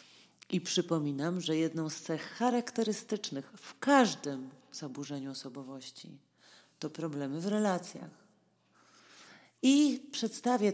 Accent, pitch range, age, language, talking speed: native, 155-210 Hz, 40-59, Polish, 95 wpm